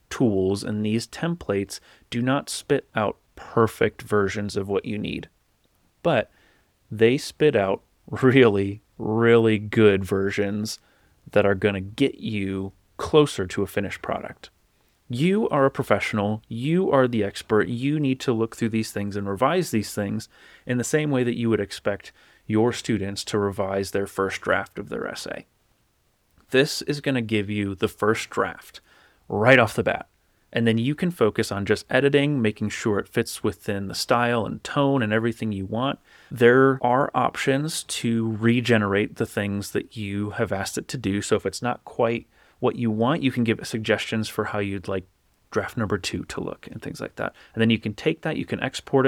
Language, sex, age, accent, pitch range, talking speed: English, male, 30-49, American, 100-125 Hz, 185 wpm